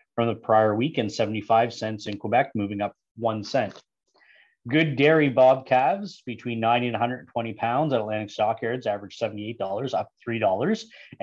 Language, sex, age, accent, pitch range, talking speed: English, male, 20-39, American, 110-125 Hz, 155 wpm